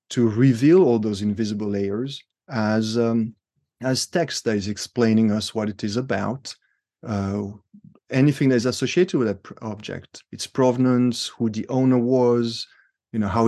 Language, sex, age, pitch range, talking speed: English, male, 30-49, 110-130 Hz, 160 wpm